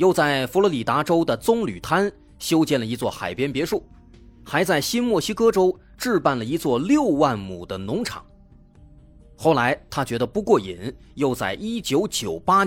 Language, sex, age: Chinese, male, 30-49